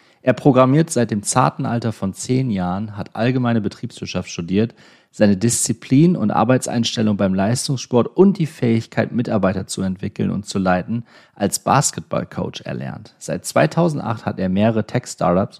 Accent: German